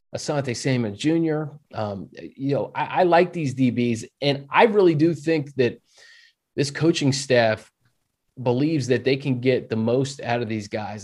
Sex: male